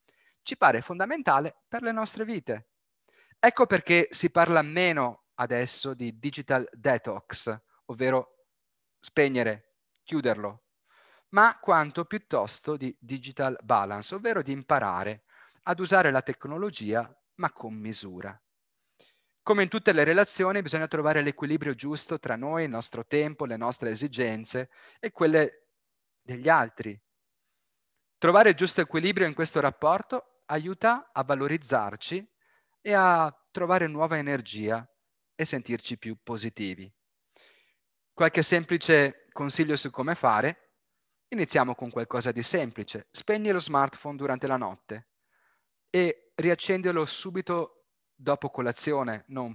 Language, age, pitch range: Italian, 30-49, 125-175 Hz